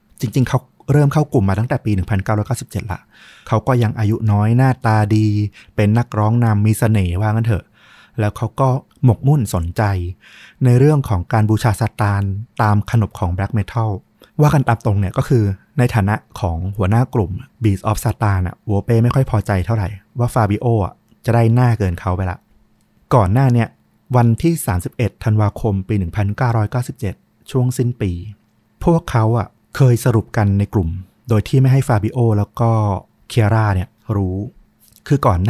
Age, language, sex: 20-39, Thai, male